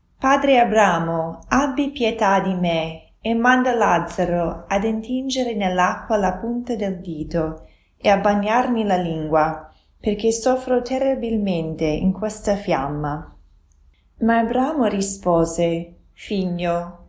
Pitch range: 160-225 Hz